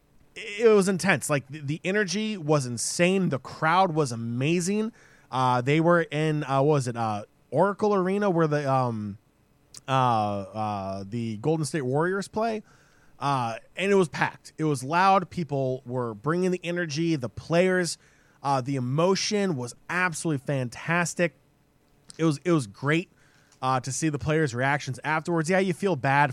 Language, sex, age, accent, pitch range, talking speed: English, male, 20-39, American, 140-185 Hz, 160 wpm